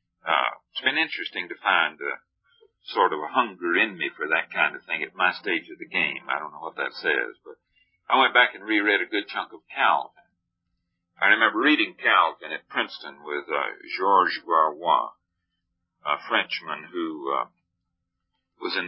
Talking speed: 180 wpm